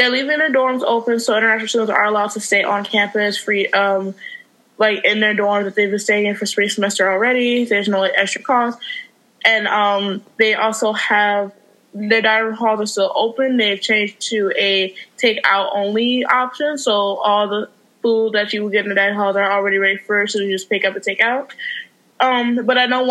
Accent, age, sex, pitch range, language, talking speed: American, 20-39, female, 200-225 Hz, English, 205 wpm